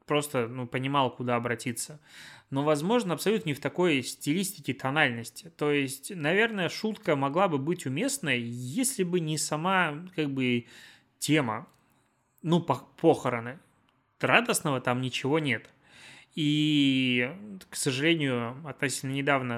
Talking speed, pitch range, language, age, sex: 120 wpm, 125-170 Hz, Russian, 20-39, male